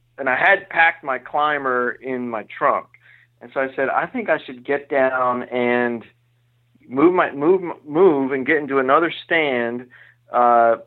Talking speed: 165 wpm